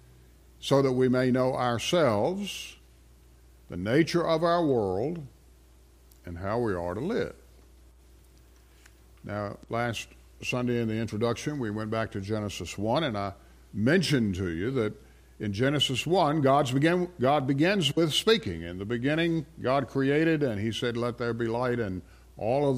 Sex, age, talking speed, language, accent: male, 50-69, 150 wpm, English, American